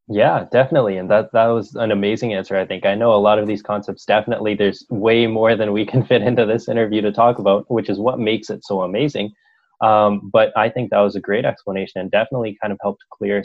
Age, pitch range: 20-39, 100-115 Hz